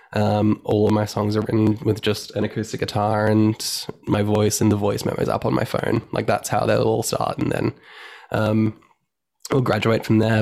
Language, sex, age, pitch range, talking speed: English, male, 10-29, 110-120 Hz, 205 wpm